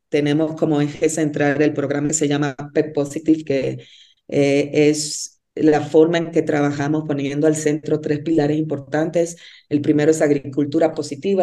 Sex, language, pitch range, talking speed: female, Spanish, 150-165 Hz, 155 wpm